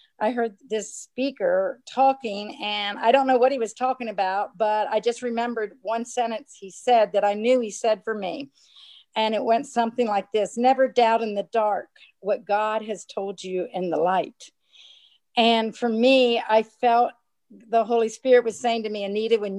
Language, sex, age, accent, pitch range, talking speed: English, female, 50-69, American, 195-235 Hz, 190 wpm